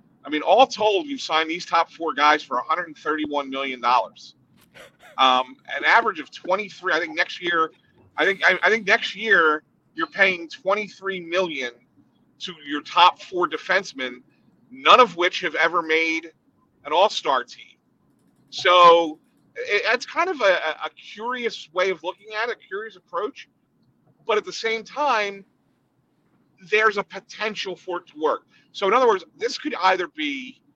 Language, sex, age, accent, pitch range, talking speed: English, male, 40-59, American, 155-215 Hz, 165 wpm